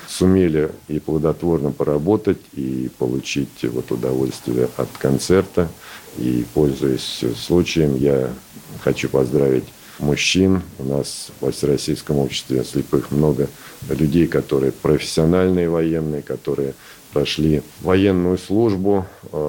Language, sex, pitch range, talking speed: Russian, male, 65-85 Hz, 100 wpm